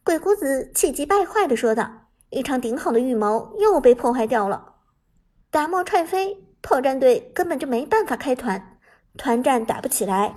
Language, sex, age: Chinese, male, 50-69